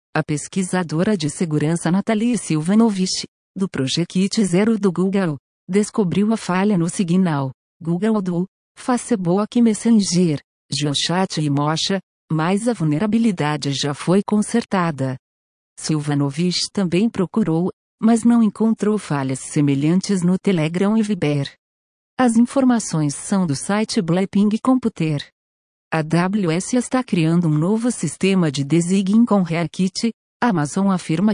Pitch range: 155-210 Hz